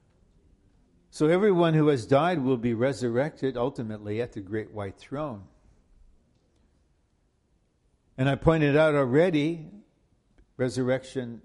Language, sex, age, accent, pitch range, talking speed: English, male, 60-79, American, 105-135 Hz, 105 wpm